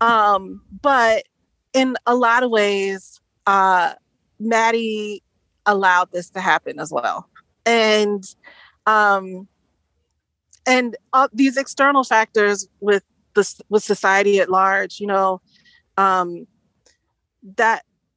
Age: 30-49